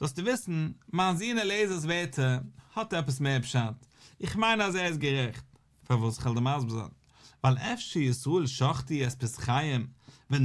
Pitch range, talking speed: 130-180 Hz, 170 wpm